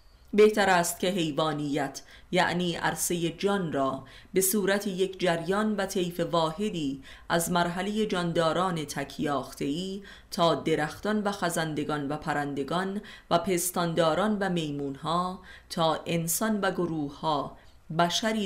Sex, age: female, 30-49